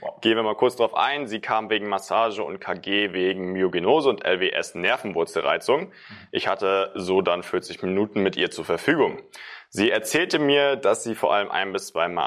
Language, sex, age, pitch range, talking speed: German, male, 20-39, 95-145 Hz, 175 wpm